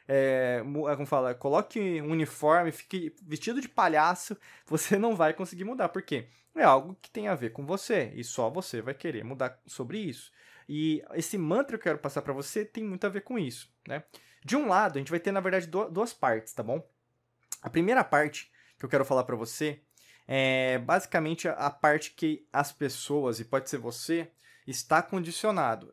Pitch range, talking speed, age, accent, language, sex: 140-185 Hz, 190 wpm, 20-39, Brazilian, Portuguese, male